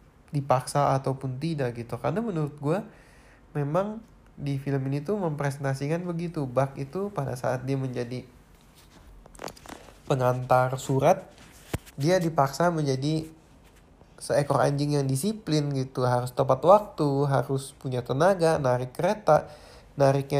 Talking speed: 115 wpm